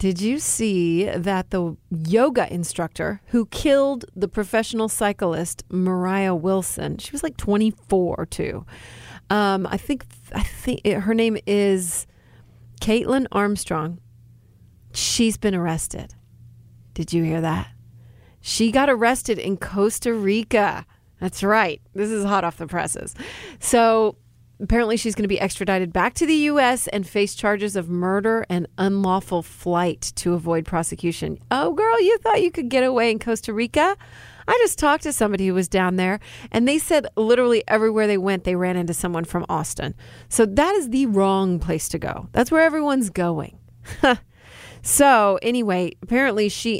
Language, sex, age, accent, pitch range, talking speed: English, female, 40-59, American, 175-225 Hz, 155 wpm